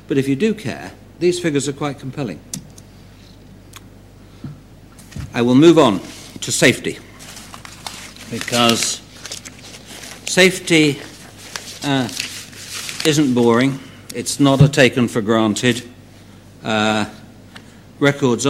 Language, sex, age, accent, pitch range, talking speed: English, male, 60-79, British, 100-135 Hz, 95 wpm